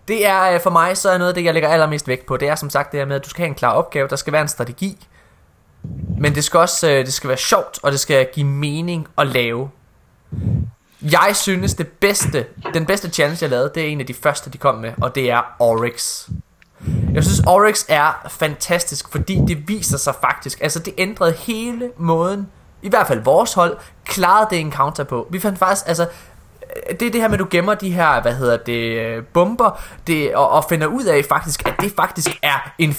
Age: 20-39